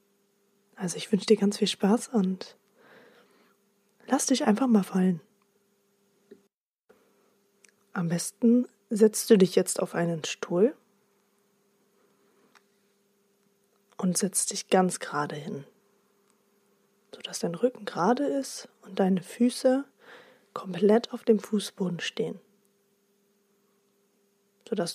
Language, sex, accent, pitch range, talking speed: German, female, German, 200-220 Hz, 100 wpm